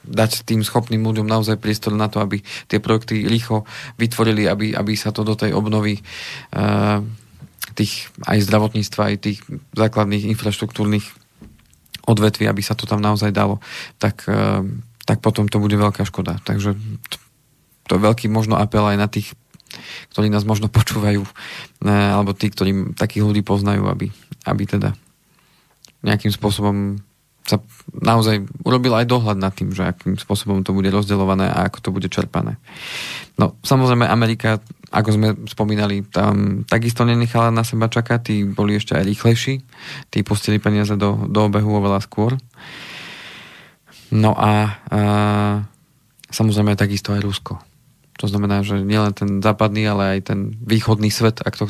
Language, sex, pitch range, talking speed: Slovak, male, 100-110 Hz, 150 wpm